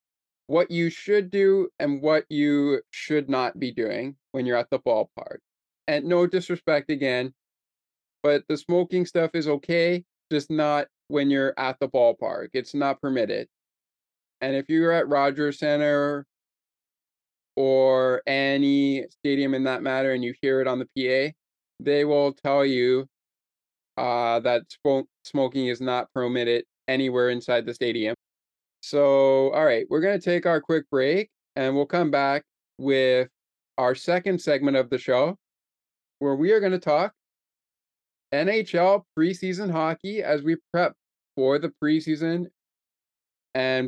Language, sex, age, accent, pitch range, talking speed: English, male, 20-39, American, 130-165 Hz, 145 wpm